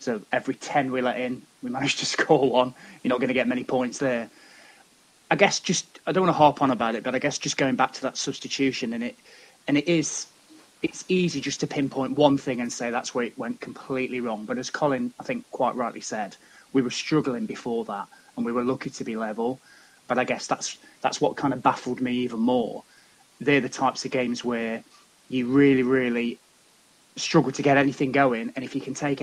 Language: English